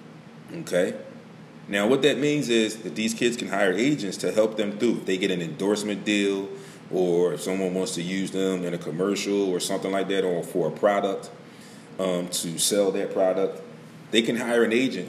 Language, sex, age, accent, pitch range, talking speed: English, male, 30-49, American, 95-120 Hz, 200 wpm